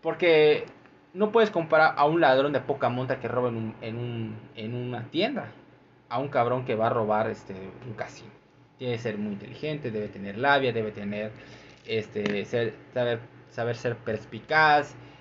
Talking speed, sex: 180 wpm, male